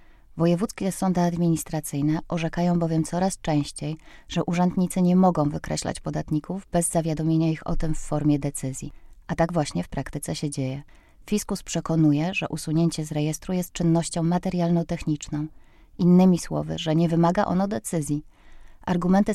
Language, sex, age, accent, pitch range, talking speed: Polish, female, 20-39, native, 155-175 Hz, 140 wpm